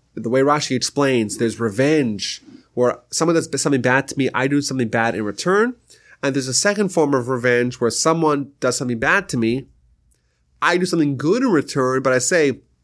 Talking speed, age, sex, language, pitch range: 195 wpm, 30-49, male, English, 105-145 Hz